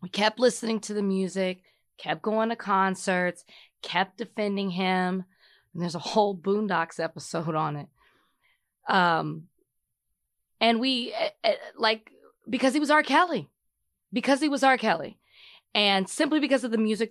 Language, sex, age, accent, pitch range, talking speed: English, female, 20-39, American, 180-215 Hz, 145 wpm